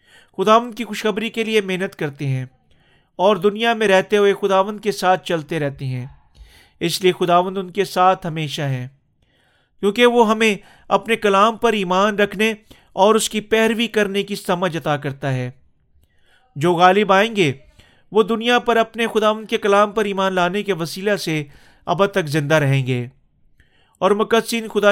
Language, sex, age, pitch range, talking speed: Urdu, male, 40-59, 160-210 Hz, 170 wpm